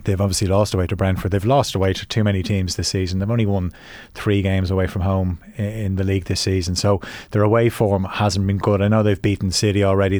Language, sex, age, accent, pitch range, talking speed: English, male, 30-49, Irish, 95-110 Hz, 240 wpm